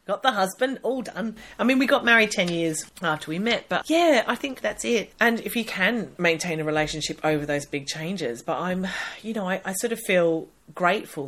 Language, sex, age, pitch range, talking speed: English, female, 30-49, 150-190 Hz, 225 wpm